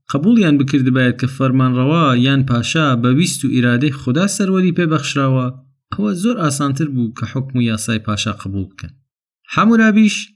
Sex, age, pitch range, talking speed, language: male, 30-49, 120-165 Hz, 155 wpm, Persian